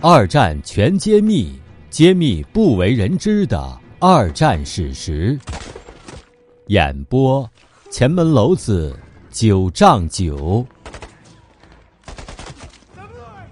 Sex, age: male, 50-69